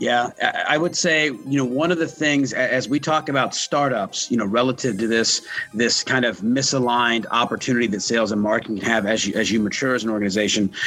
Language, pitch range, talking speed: English, 110-135 Hz, 210 wpm